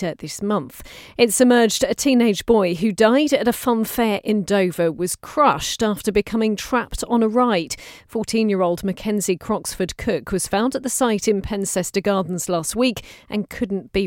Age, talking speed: 40-59, 170 wpm